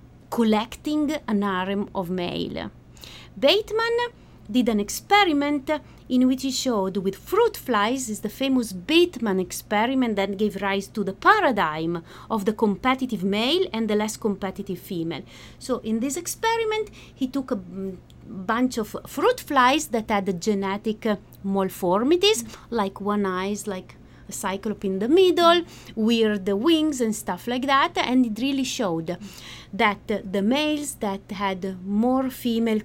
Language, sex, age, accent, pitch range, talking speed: English, female, 30-49, Italian, 195-260 Hz, 140 wpm